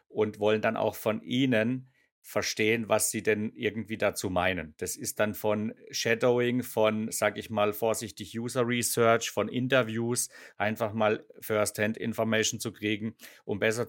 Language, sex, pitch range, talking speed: English, male, 110-125 Hz, 145 wpm